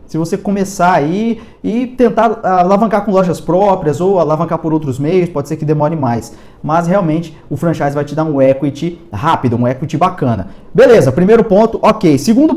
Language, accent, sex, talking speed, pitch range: Portuguese, Brazilian, male, 180 wpm, 135-185 Hz